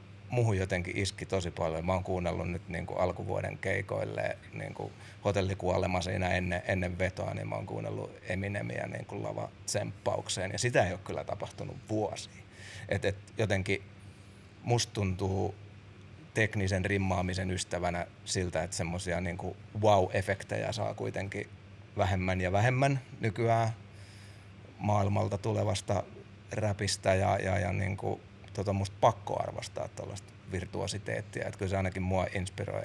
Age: 30-49